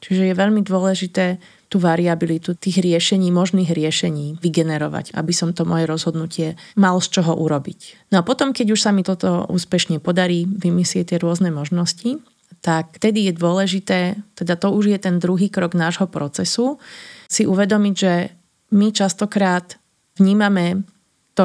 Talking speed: 150 wpm